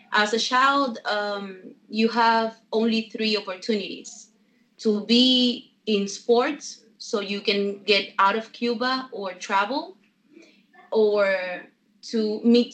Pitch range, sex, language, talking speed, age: 195-235 Hz, female, English, 120 wpm, 30-49